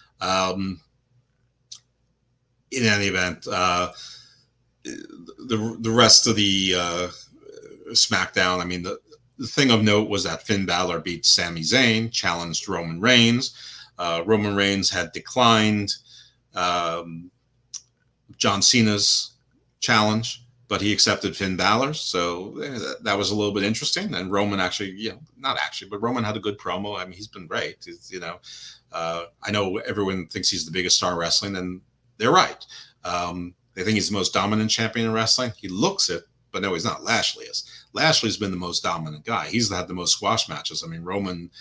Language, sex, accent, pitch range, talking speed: English, male, American, 90-120 Hz, 175 wpm